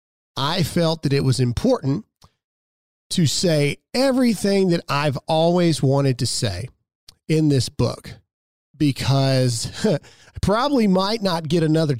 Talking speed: 125 wpm